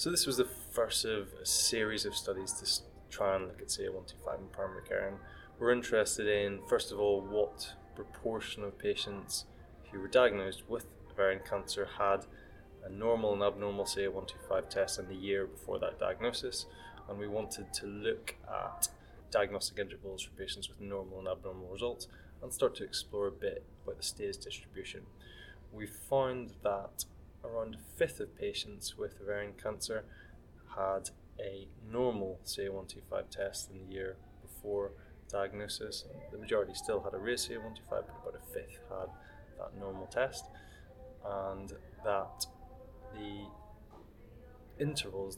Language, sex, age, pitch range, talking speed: English, male, 20-39, 95-110 Hz, 150 wpm